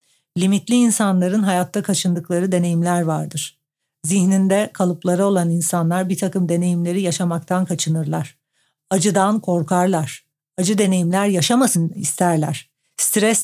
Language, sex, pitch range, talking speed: Turkish, female, 160-200 Hz, 100 wpm